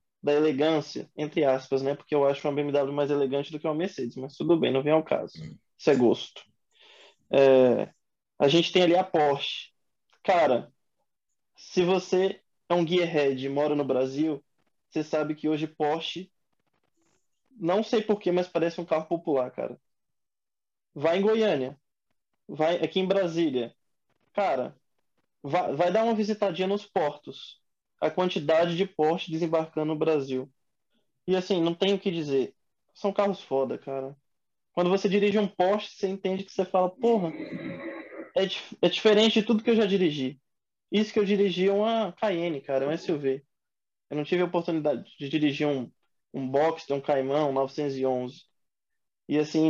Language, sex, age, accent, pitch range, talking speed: Portuguese, male, 20-39, Brazilian, 140-185 Hz, 165 wpm